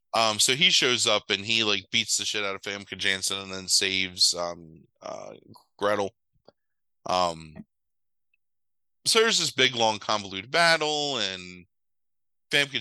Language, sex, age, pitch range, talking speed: English, male, 30-49, 95-130 Hz, 140 wpm